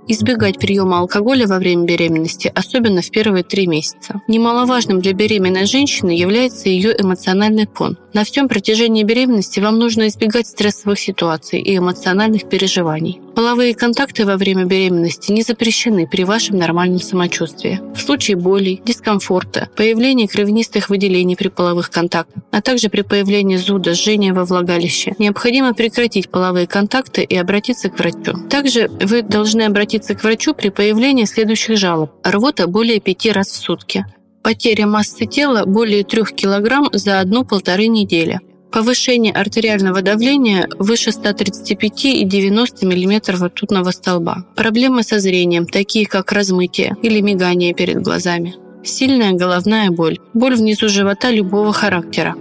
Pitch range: 185-225 Hz